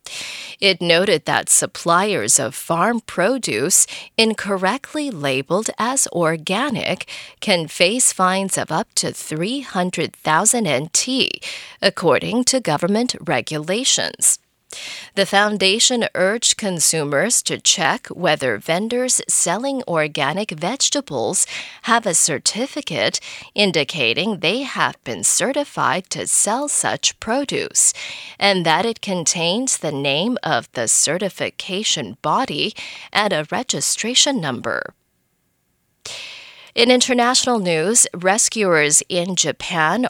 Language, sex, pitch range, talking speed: English, female, 170-245 Hz, 100 wpm